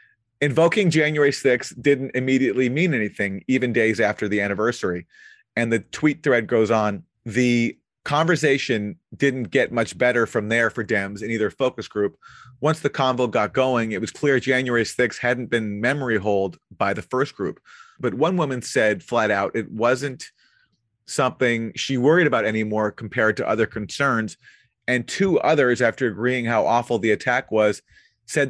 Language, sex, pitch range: English, male, 105-130 Hz